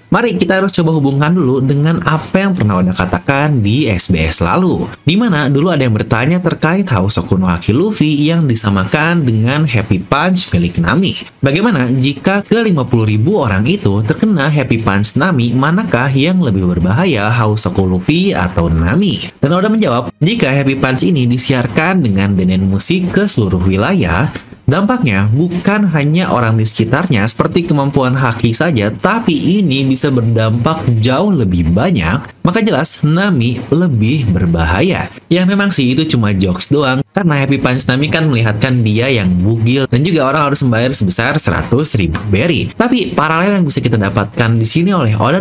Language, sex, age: English, male, 30-49